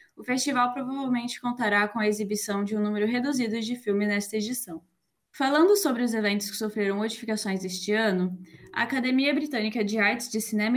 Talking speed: 175 wpm